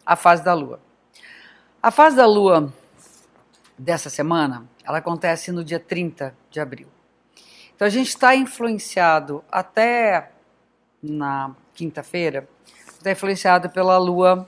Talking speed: 120 wpm